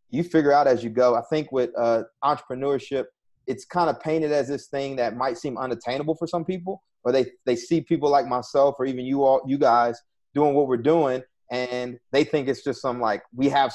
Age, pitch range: 30-49, 120-140 Hz